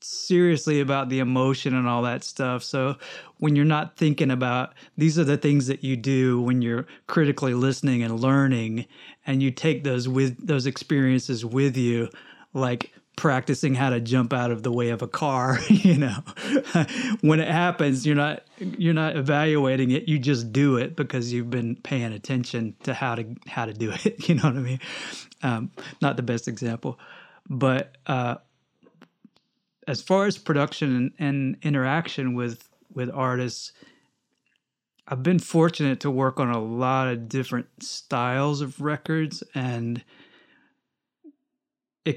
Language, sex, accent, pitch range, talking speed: English, male, American, 125-150 Hz, 160 wpm